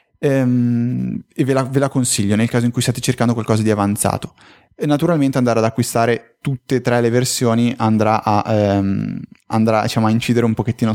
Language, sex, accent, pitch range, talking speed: Italian, male, native, 110-140 Hz, 185 wpm